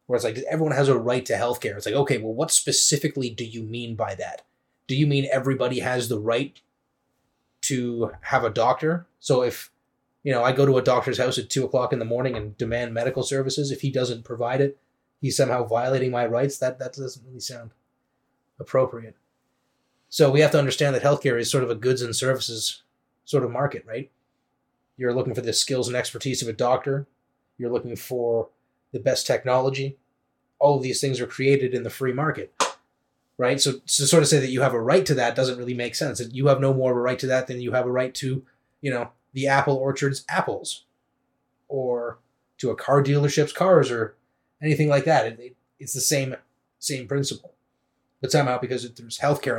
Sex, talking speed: male, 205 wpm